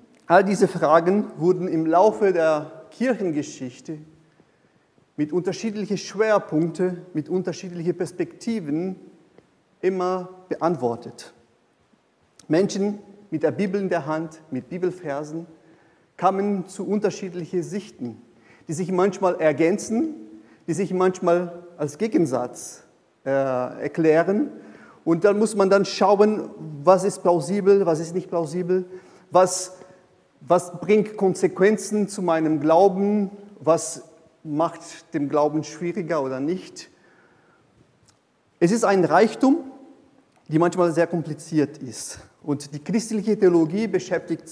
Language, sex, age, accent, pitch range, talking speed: German, male, 40-59, German, 160-195 Hz, 110 wpm